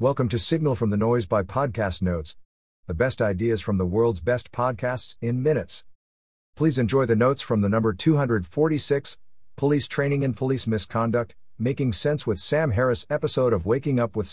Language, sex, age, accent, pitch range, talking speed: English, male, 50-69, American, 90-130 Hz, 175 wpm